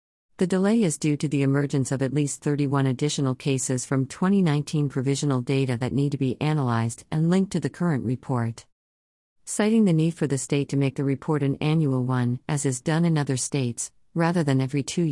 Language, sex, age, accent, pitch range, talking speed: English, female, 50-69, American, 130-155 Hz, 200 wpm